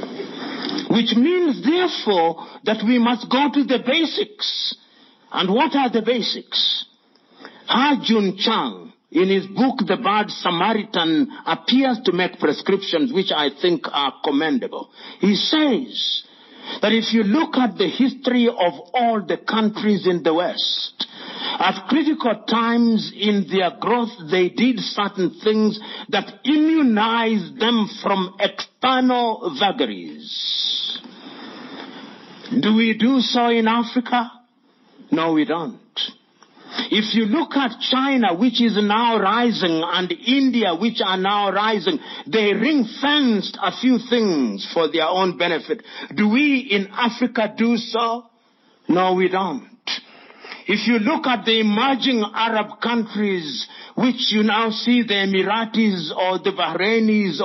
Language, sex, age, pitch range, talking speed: English, male, 50-69, 200-255 Hz, 130 wpm